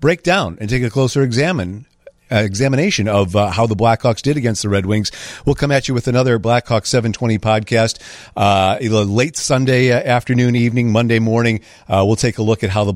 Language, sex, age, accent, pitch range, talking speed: English, male, 50-69, American, 105-125 Hz, 195 wpm